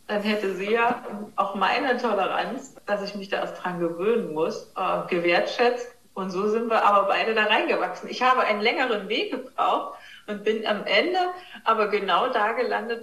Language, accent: German, German